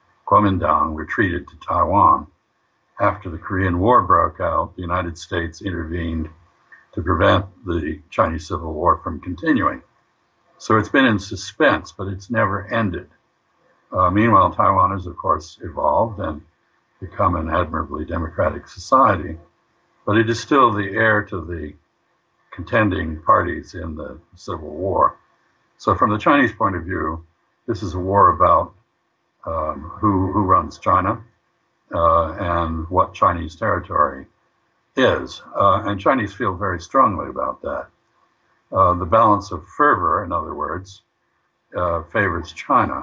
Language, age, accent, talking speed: English, 60-79, American, 140 wpm